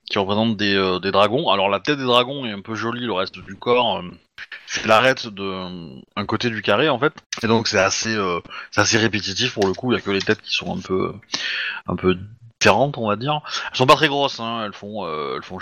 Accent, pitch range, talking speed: French, 95-120 Hz, 260 wpm